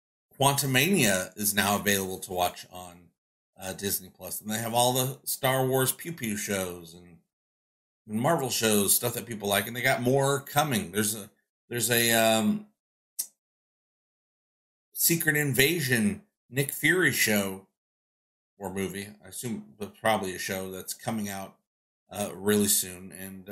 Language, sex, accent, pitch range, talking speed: English, male, American, 100-130 Hz, 150 wpm